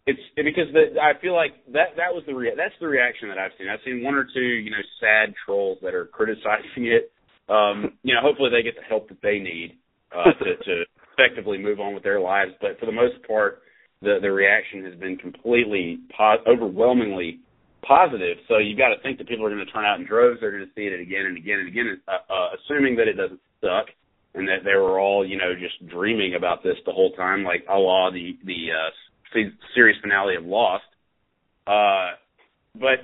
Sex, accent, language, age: male, American, English, 30-49